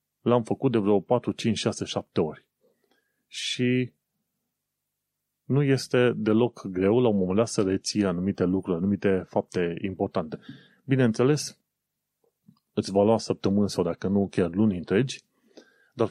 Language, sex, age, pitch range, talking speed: Romanian, male, 30-49, 95-125 Hz, 130 wpm